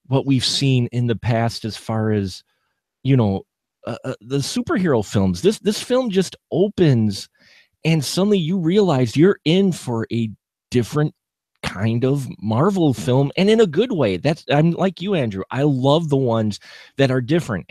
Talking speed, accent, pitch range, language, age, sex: 170 wpm, American, 100-145 Hz, English, 30-49, male